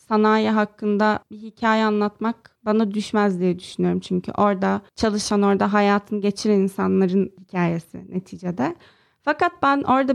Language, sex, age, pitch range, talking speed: Turkish, female, 30-49, 205-235 Hz, 125 wpm